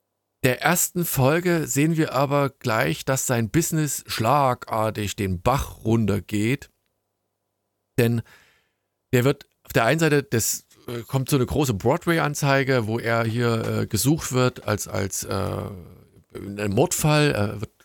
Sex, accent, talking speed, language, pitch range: male, German, 135 wpm, German, 110-145 Hz